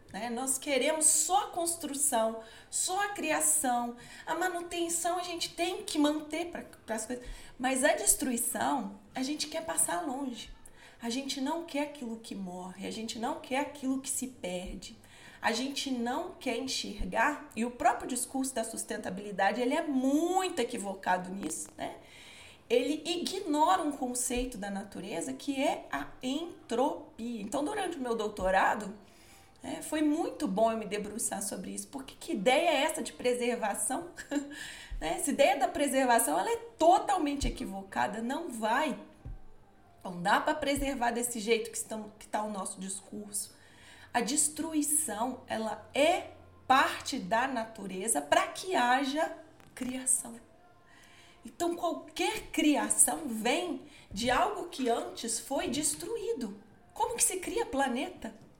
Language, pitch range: Portuguese, 225-315 Hz